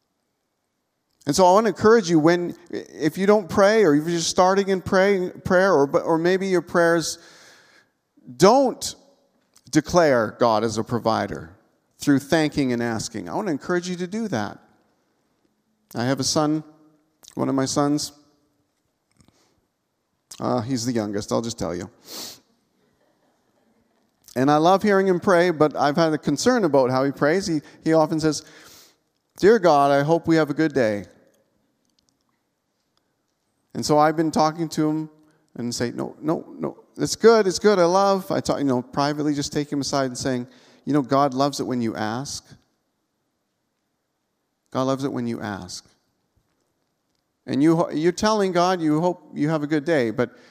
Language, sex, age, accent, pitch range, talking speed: English, male, 40-59, American, 130-170 Hz, 170 wpm